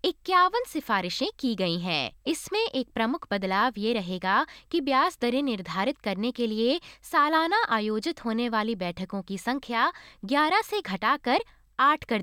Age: 20-39